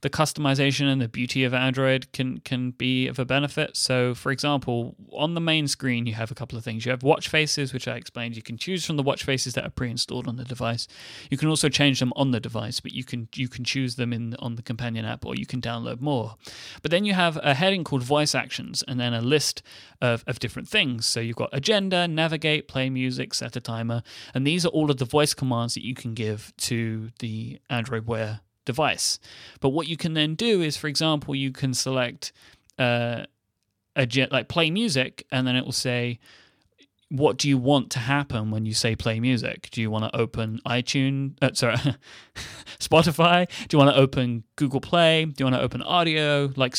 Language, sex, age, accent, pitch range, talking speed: English, male, 30-49, British, 120-145 Hz, 220 wpm